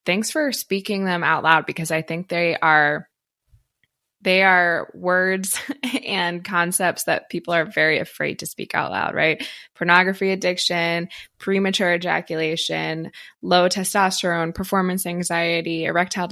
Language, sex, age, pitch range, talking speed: English, female, 20-39, 165-190 Hz, 130 wpm